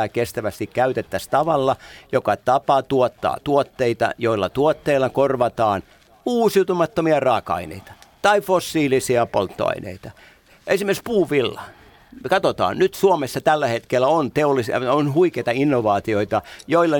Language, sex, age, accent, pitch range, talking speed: Finnish, male, 50-69, native, 110-145 Hz, 100 wpm